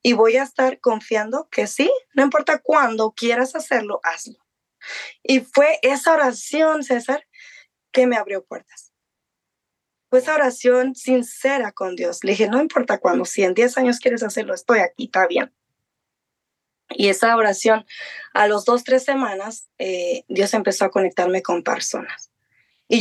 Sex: female